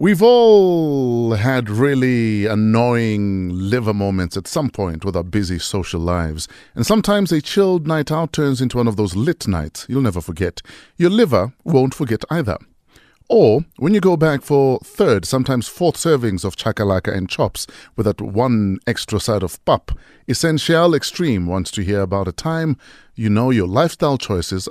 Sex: male